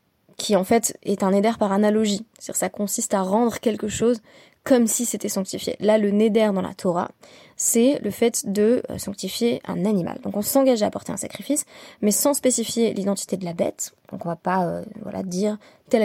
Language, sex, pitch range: French, female, 190-230 Hz